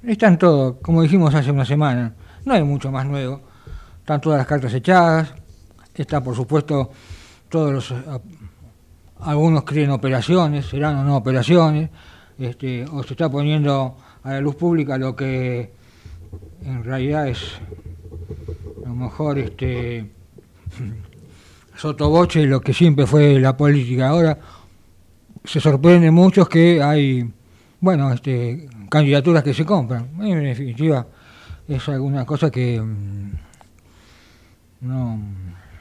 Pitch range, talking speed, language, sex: 115-155 Hz, 125 wpm, Italian, male